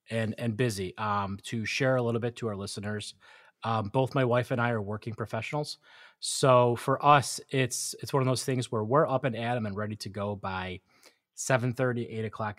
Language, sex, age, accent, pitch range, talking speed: English, male, 30-49, American, 105-130 Hz, 210 wpm